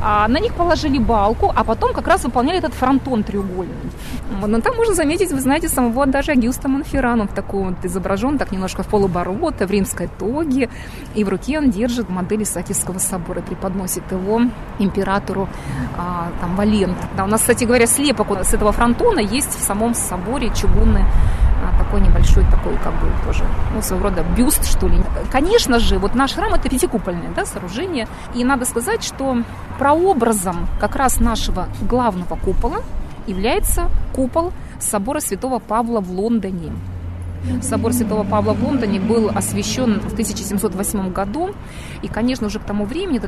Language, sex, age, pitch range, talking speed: Russian, female, 20-39, 190-260 Hz, 165 wpm